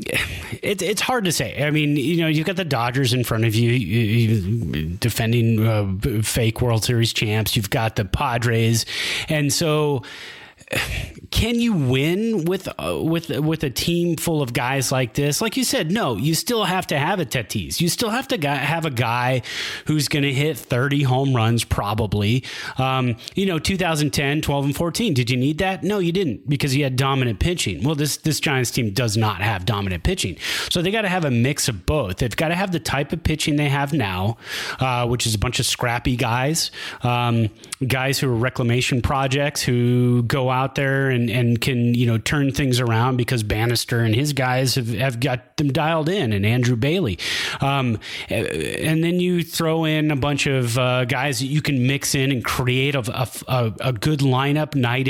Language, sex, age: English, male, 30-49